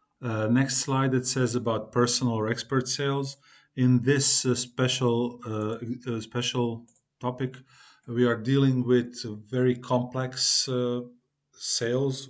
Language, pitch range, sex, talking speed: Croatian, 115-135 Hz, male, 125 wpm